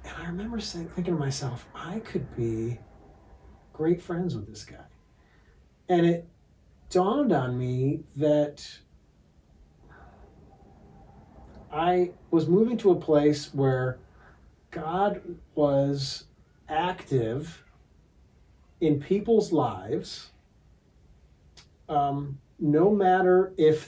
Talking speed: 95 wpm